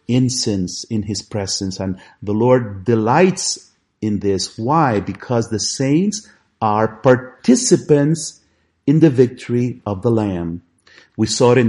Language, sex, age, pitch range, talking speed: English, male, 50-69, 100-140 Hz, 135 wpm